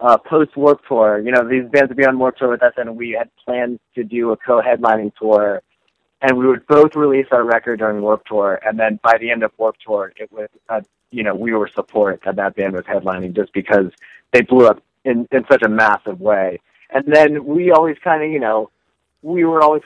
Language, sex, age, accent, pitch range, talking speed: English, male, 30-49, American, 110-145 Hz, 235 wpm